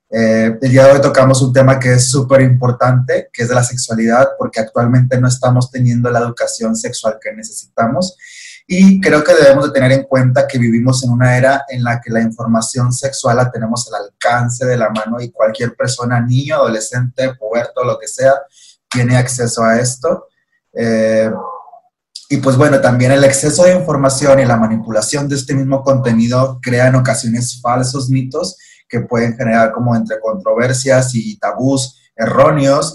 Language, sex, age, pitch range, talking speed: Spanish, male, 30-49, 115-135 Hz, 175 wpm